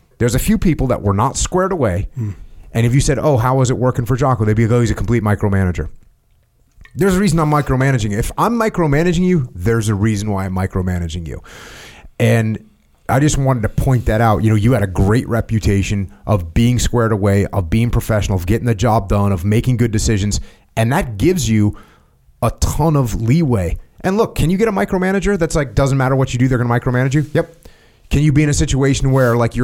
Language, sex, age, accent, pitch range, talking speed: English, male, 30-49, American, 110-155 Hz, 225 wpm